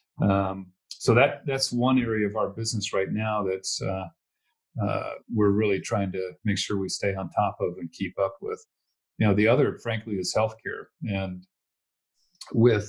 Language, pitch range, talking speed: English, 95-110 Hz, 175 wpm